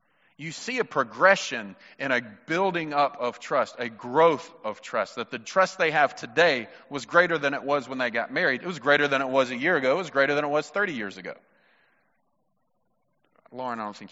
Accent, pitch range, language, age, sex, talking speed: American, 135-185 Hz, English, 30-49, male, 215 wpm